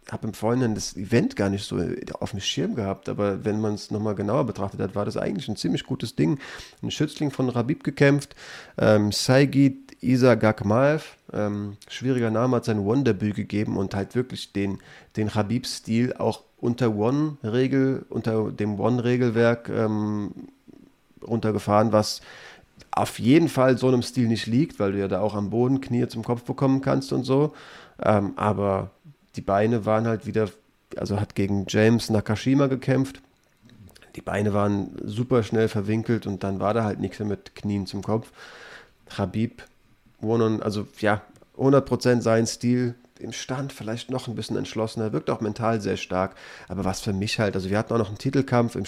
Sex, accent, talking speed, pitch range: male, German, 175 wpm, 100-125 Hz